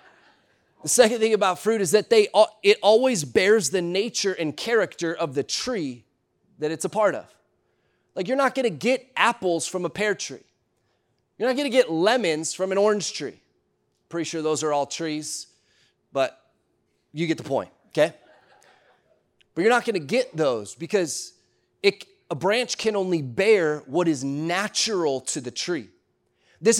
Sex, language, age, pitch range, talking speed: male, English, 30-49, 145-215 Hz, 170 wpm